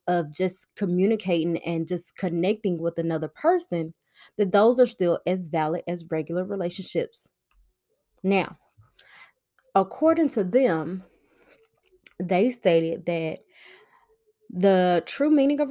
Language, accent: English, American